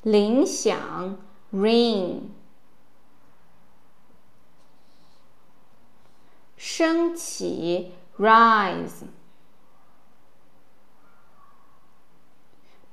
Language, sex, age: Chinese, female, 20-39